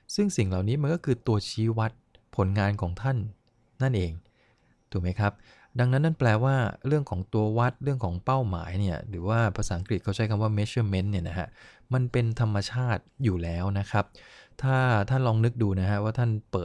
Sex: male